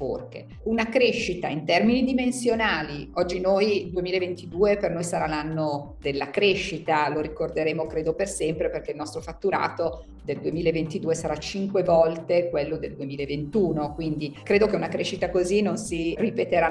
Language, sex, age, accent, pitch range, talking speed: Italian, female, 50-69, native, 170-220 Hz, 145 wpm